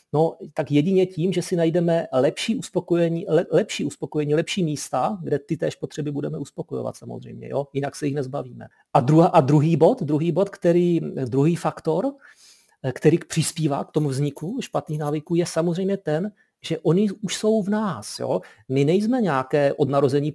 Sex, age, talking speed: male, 40-59, 170 wpm